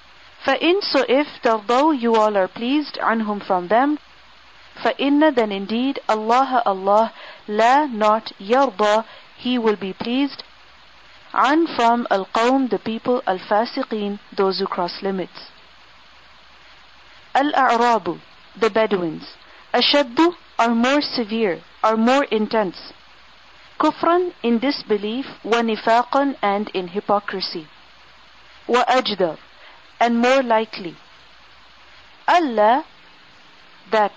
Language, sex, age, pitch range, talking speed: English, female, 40-59, 200-265 Hz, 95 wpm